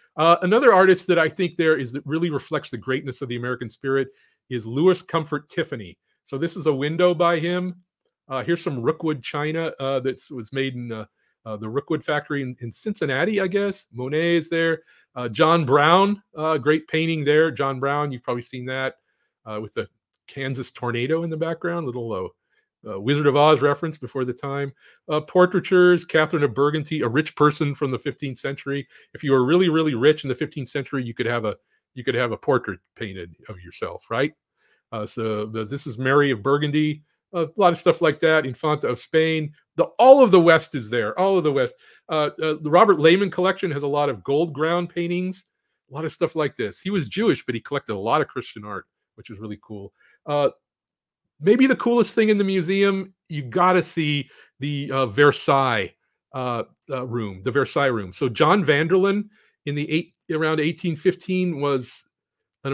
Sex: male